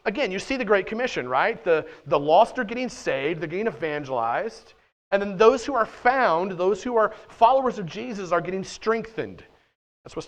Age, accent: 40-59, American